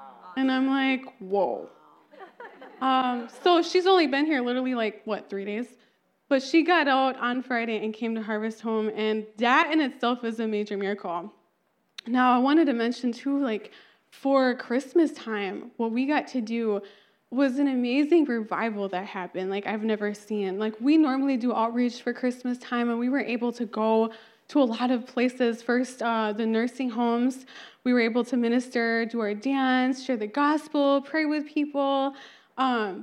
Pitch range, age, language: 220-265 Hz, 20-39, English